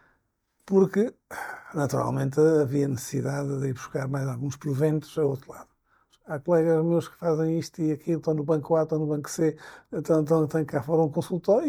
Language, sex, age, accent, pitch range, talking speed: Portuguese, male, 50-69, Portuguese, 145-175 Hz, 190 wpm